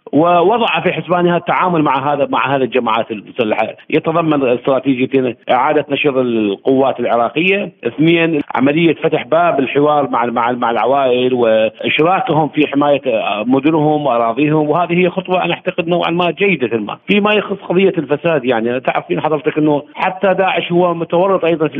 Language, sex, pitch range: Arabic, male, 135-165 Hz